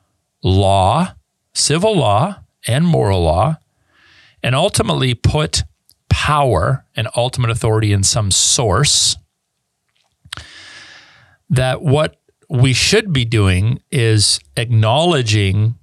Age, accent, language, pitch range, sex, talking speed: 40-59, American, English, 95-120 Hz, male, 90 wpm